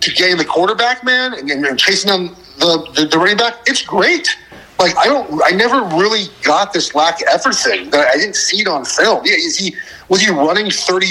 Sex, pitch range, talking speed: male, 150-205 Hz, 225 wpm